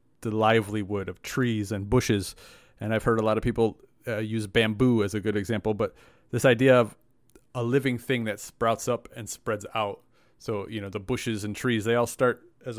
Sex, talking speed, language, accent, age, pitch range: male, 205 wpm, English, American, 30-49, 110-125 Hz